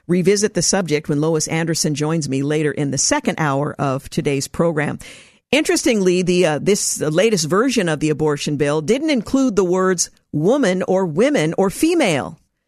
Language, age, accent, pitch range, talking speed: English, 50-69, American, 165-230 Hz, 170 wpm